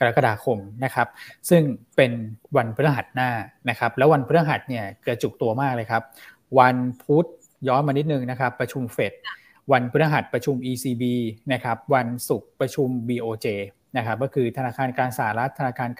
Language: Thai